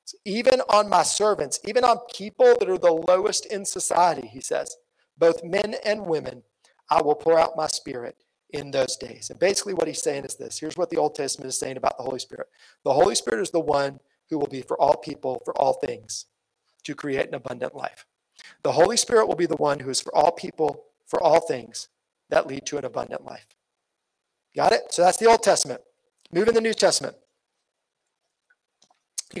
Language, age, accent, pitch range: English, 40-59, American, 180-240 Hz